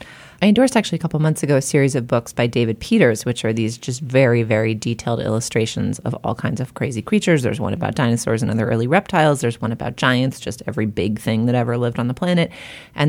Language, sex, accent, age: English, female, American, 30-49